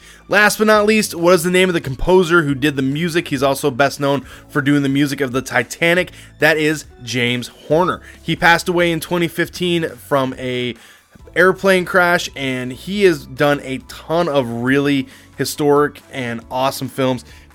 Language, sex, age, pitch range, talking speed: English, male, 20-39, 140-185 Hz, 180 wpm